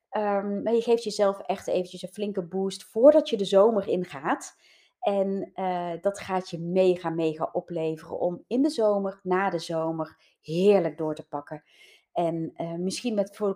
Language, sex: Dutch, female